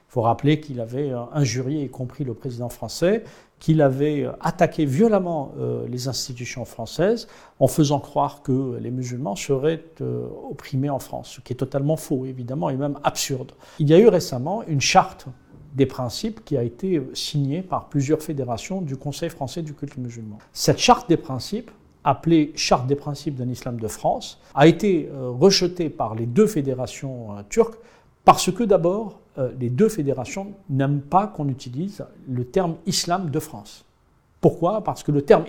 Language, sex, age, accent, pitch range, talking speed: French, male, 50-69, French, 130-170 Hz, 165 wpm